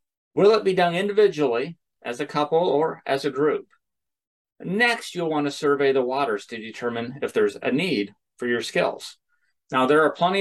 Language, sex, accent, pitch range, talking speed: English, male, American, 125-170 Hz, 185 wpm